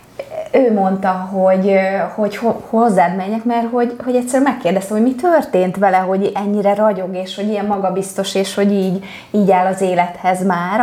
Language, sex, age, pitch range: Hungarian, female, 20-39, 185-225 Hz